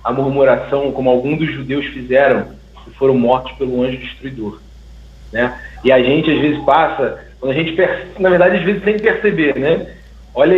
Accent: Brazilian